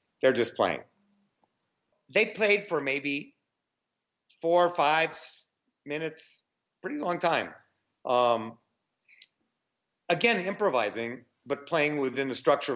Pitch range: 140-205 Hz